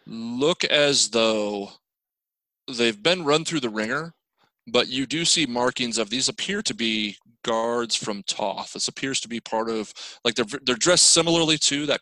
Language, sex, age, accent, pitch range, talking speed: English, male, 30-49, American, 105-125 Hz, 175 wpm